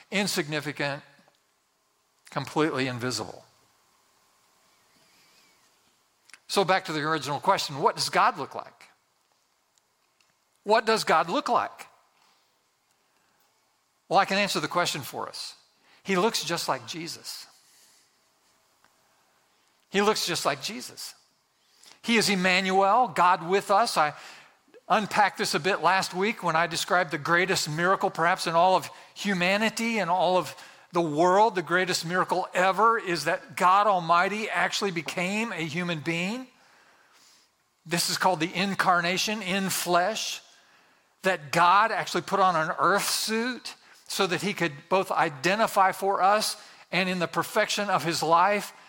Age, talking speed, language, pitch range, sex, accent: 50-69, 135 wpm, English, 170-200 Hz, male, American